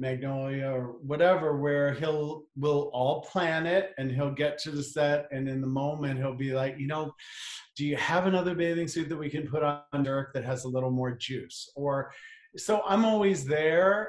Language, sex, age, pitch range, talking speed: English, male, 40-59, 130-165 Hz, 200 wpm